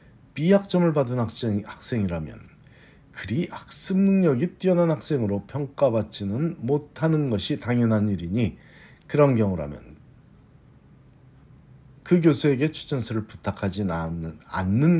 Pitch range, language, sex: 105-150 Hz, Korean, male